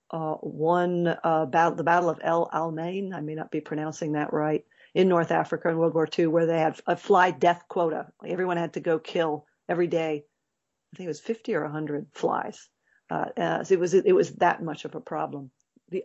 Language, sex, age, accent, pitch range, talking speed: English, female, 50-69, American, 160-180 Hz, 215 wpm